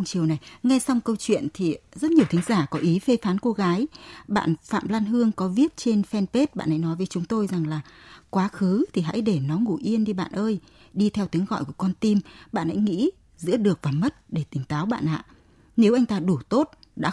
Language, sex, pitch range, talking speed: Vietnamese, female, 165-230 Hz, 240 wpm